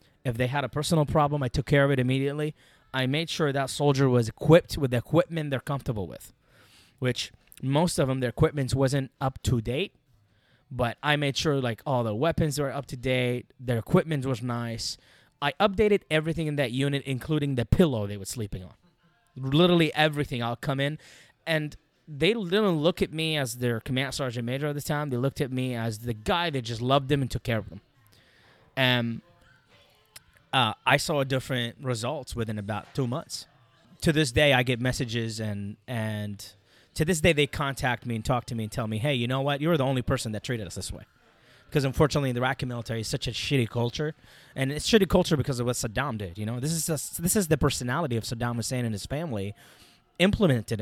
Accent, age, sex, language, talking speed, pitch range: American, 20-39, male, English, 210 wpm, 120-150 Hz